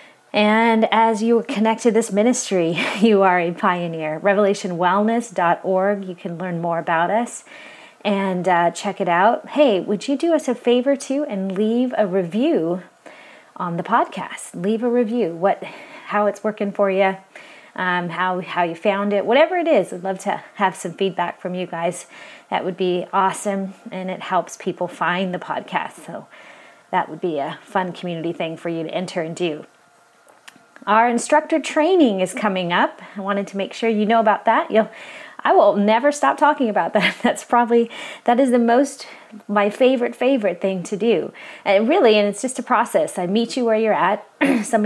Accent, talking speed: American, 185 wpm